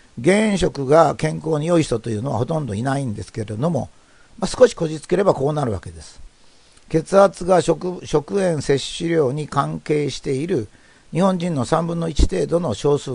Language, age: Japanese, 50-69